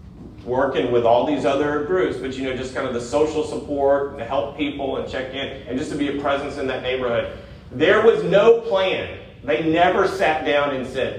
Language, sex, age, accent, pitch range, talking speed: English, male, 40-59, American, 115-145 Hz, 215 wpm